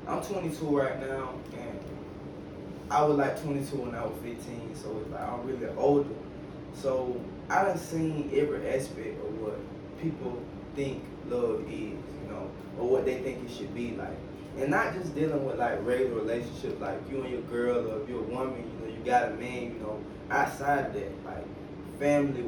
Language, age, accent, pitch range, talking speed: English, 20-39, American, 115-145 Hz, 185 wpm